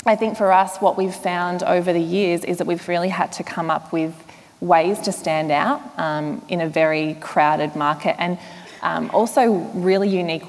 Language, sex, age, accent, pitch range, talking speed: English, female, 20-39, Australian, 160-185 Hz, 195 wpm